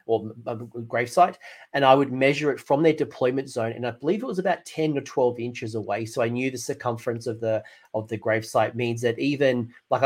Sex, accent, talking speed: male, Australian, 210 wpm